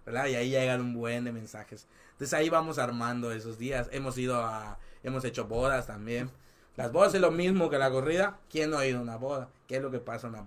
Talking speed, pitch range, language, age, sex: 250 wpm, 115-135 Hz, Spanish, 30-49, male